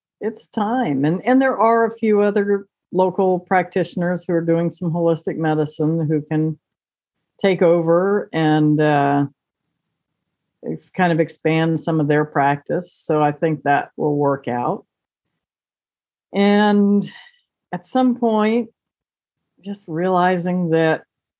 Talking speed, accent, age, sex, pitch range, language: 125 wpm, American, 50-69, female, 150-190 Hz, English